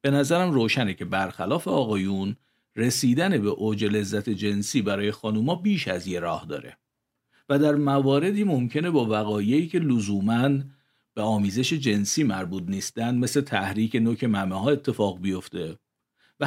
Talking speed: 140 wpm